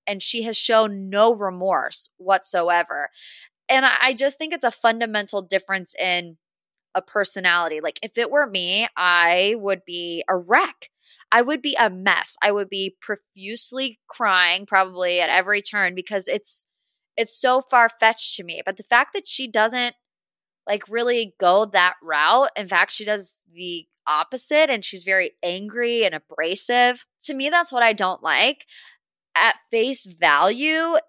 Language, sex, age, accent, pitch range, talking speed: English, female, 20-39, American, 185-240 Hz, 160 wpm